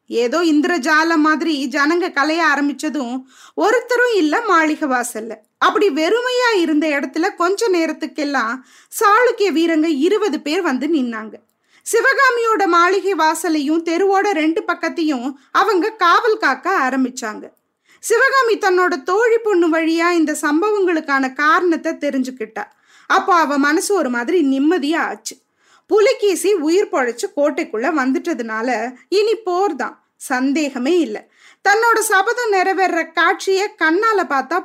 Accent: native